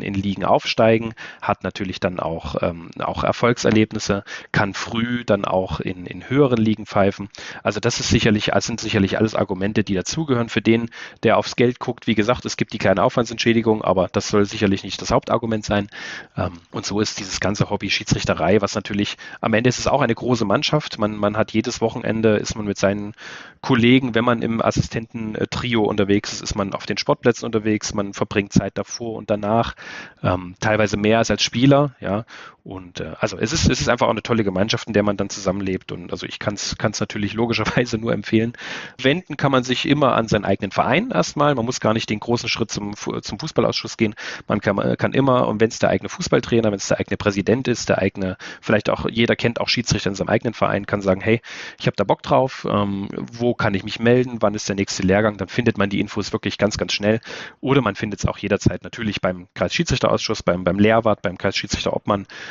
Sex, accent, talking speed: male, German, 210 wpm